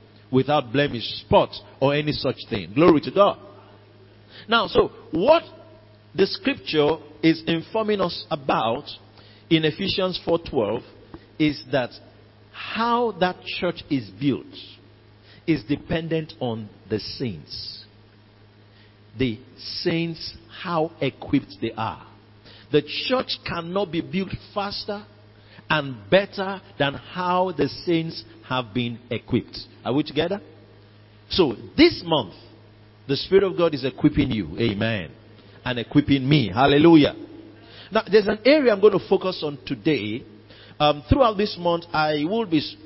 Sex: male